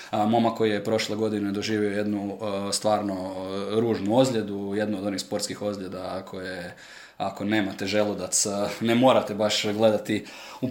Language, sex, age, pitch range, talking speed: Croatian, male, 20-39, 105-115 Hz, 135 wpm